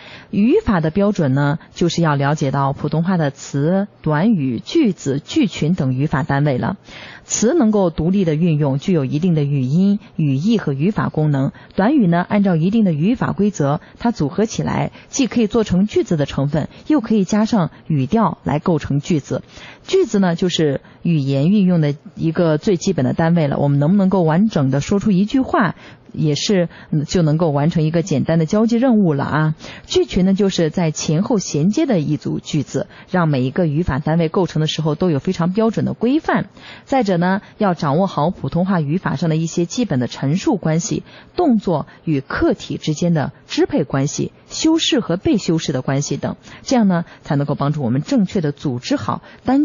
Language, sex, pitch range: Chinese, female, 150-205 Hz